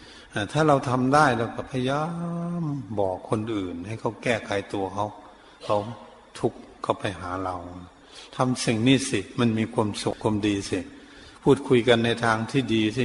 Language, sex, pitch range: Thai, male, 105-135 Hz